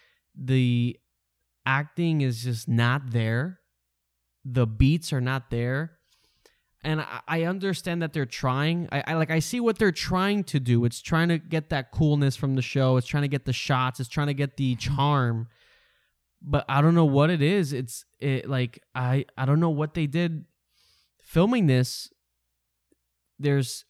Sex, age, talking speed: male, 20-39, 175 wpm